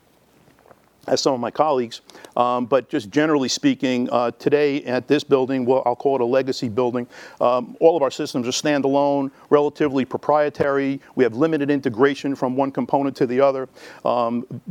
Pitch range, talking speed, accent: 120-140 Hz, 170 wpm, American